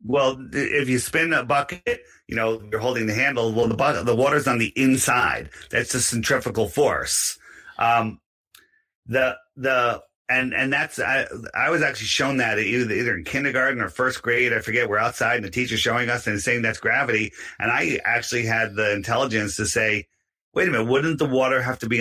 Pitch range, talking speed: 110-135 Hz, 200 wpm